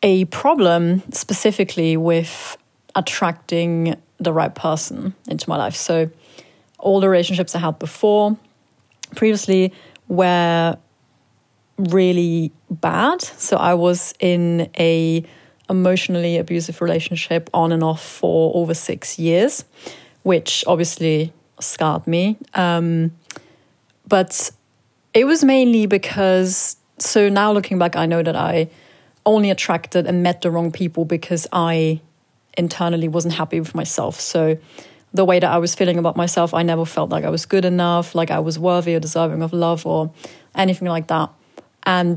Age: 30-49